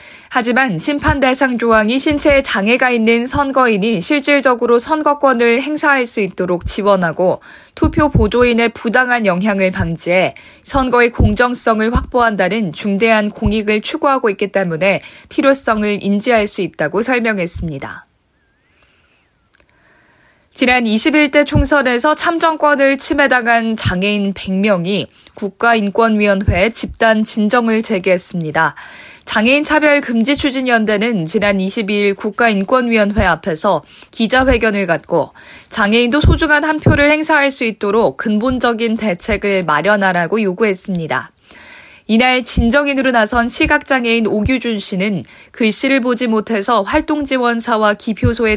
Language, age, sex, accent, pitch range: Korean, 20-39, female, native, 200-255 Hz